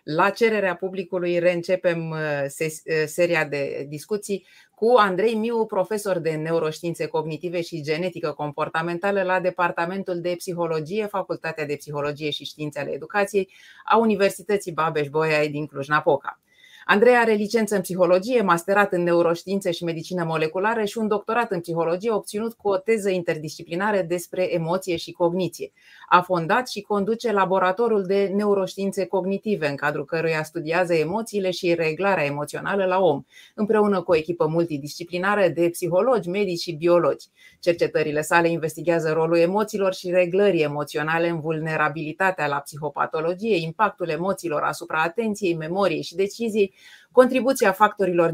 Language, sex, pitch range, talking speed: Romanian, female, 160-195 Hz, 135 wpm